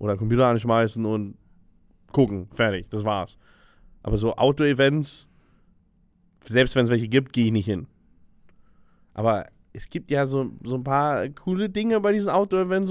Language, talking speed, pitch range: English, 155 wpm, 110-165 Hz